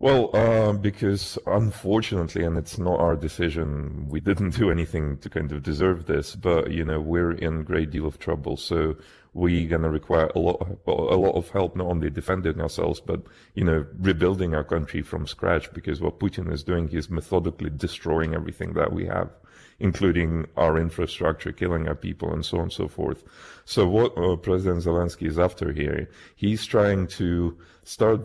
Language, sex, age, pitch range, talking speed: Danish, male, 40-59, 80-95 Hz, 185 wpm